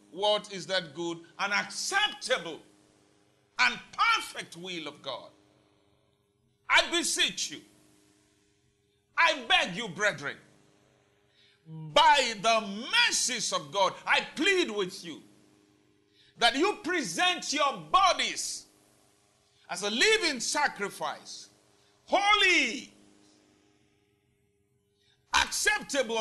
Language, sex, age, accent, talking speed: English, male, 50-69, Nigerian, 85 wpm